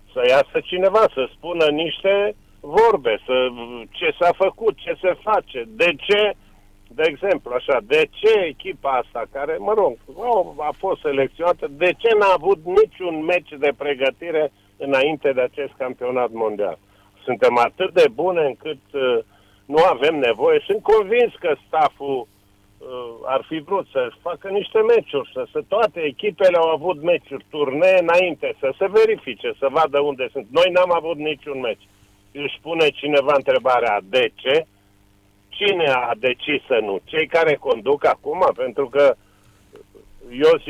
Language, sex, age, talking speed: Romanian, male, 50-69, 150 wpm